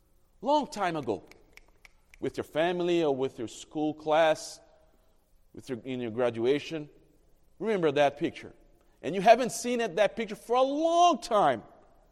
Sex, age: male, 40-59